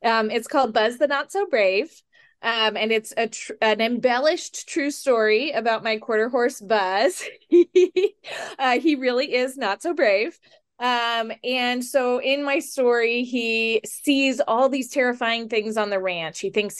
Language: English